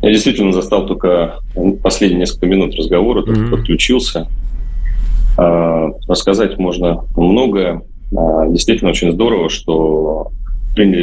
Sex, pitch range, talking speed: male, 80-95 Hz, 90 wpm